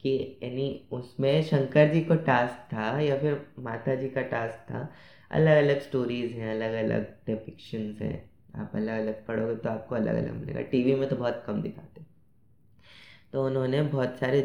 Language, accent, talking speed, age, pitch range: Hindi, native, 170 wpm, 20-39, 125-145 Hz